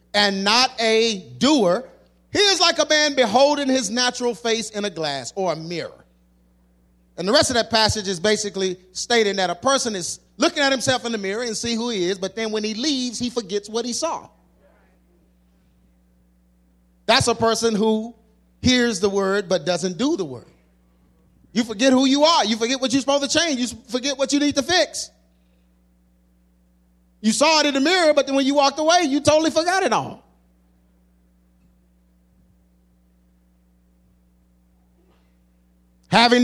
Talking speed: 170 wpm